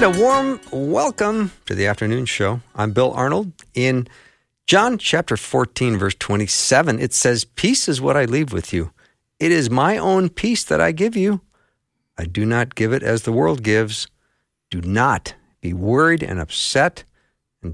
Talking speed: 170 wpm